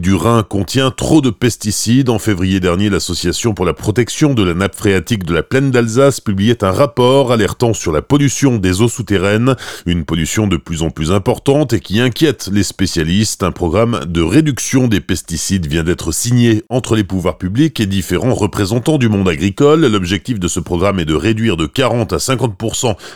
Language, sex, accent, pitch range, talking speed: French, male, French, 95-125 Hz, 185 wpm